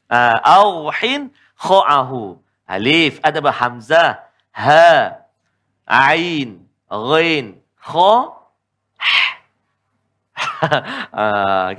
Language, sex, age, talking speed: Malayalam, male, 50-69, 60 wpm